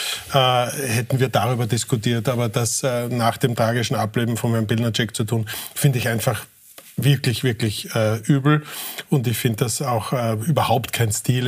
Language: German